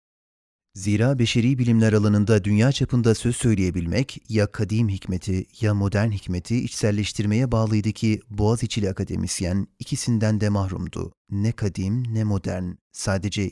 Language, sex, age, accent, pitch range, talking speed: Turkish, male, 40-59, native, 100-120 Hz, 120 wpm